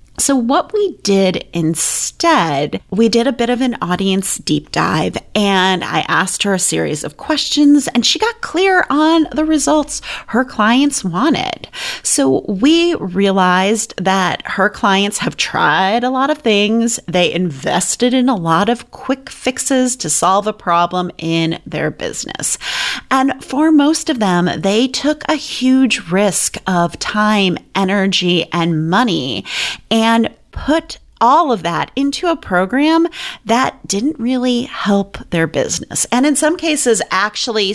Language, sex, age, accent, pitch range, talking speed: English, female, 30-49, American, 185-275 Hz, 150 wpm